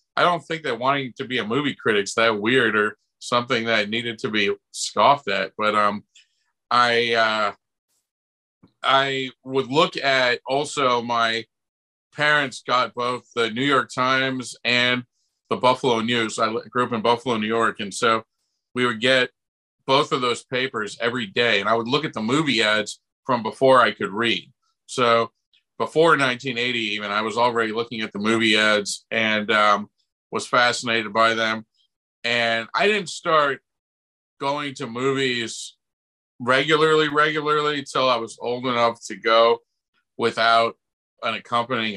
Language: English